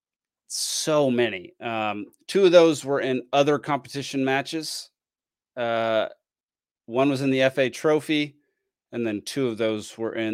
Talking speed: 145 wpm